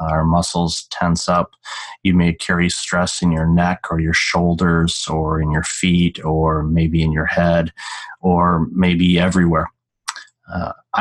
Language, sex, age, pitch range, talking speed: English, male, 30-49, 80-90 Hz, 145 wpm